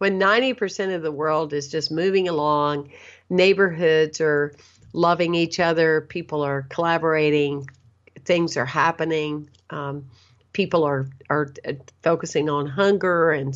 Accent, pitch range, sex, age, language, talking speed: American, 150-170 Hz, female, 50-69, English, 125 wpm